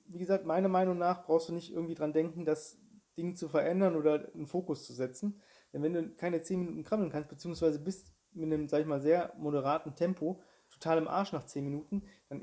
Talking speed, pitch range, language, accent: 215 wpm, 150-190 Hz, German, German